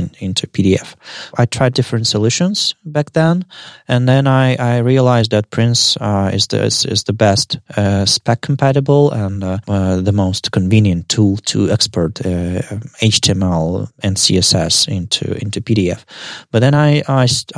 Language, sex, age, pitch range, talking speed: Russian, male, 20-39, 100-130 Hz, 150 wpm